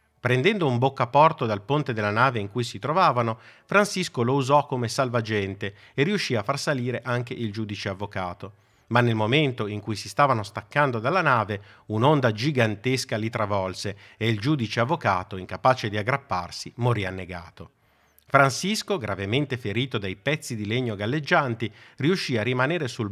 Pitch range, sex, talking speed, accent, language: 100-135 Hz, male, 155 wpm, native, Italian